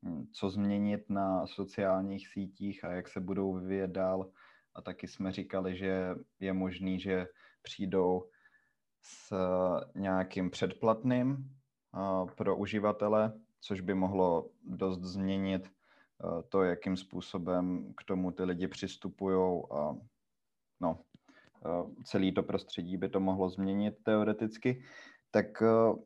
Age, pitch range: 20-39, 95-110 Hz